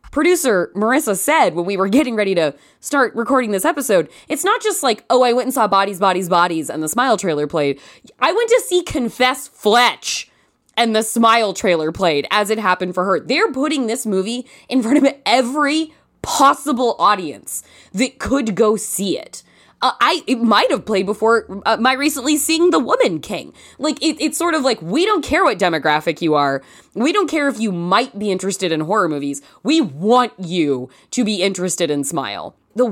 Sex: female